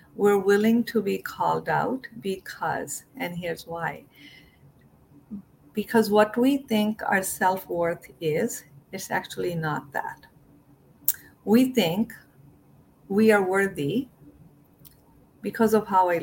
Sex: female